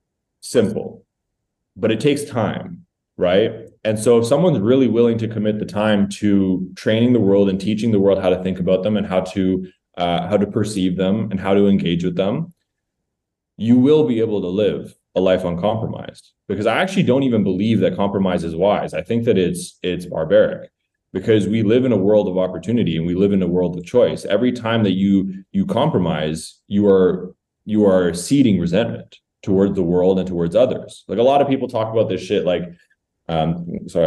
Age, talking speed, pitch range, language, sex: 20-39, 200 wpm, 95-115 Hz, English, male